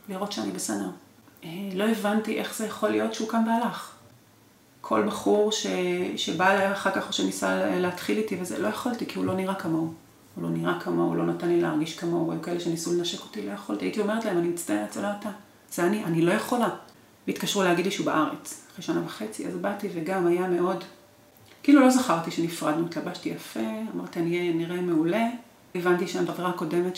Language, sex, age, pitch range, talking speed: Hebrew, female, 30-49, 165-210 Hz, 190 wpm